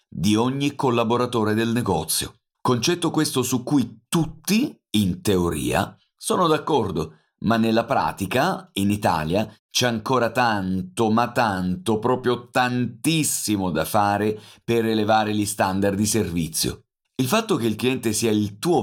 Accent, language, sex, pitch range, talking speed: native, Italian, male, 105-140 Hz, 135 wpm